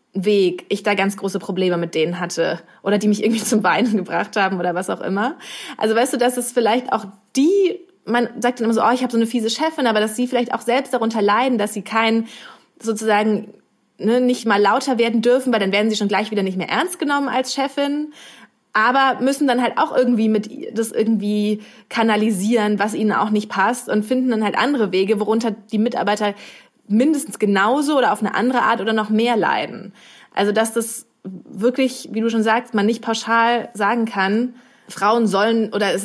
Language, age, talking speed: German, 20-39, 205 wpm